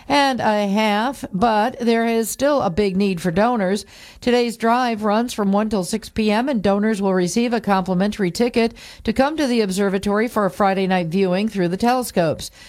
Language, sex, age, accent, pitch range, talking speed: English, female, 50-69, American, 185-230 Hz, 190 wpm